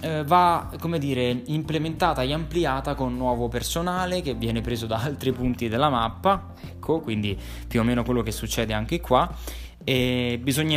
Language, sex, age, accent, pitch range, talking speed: Italian, male, 20-39, native, 115-155 Hz, 160 wpm